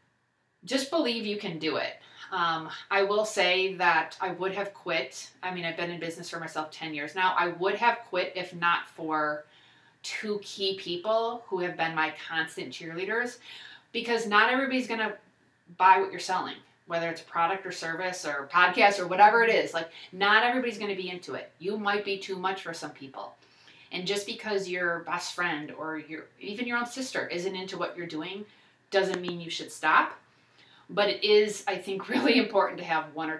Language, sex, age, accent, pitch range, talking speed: English, female, 30-49, American, 155-205 Hz, 200 wpm